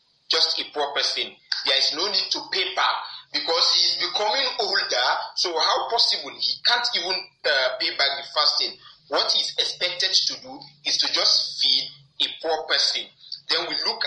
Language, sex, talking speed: English, male, 180 wpm